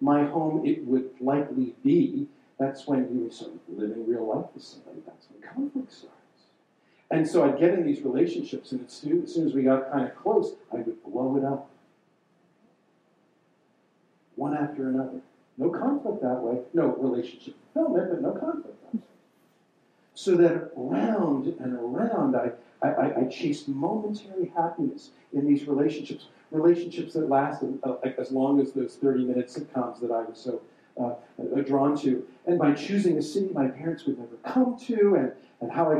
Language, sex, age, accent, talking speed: English, male, 50-69, American, 170 wpm